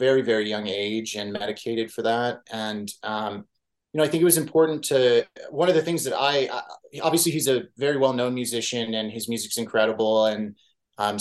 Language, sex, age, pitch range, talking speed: English, male, 30-49, 105-135 Hz, 200 wpm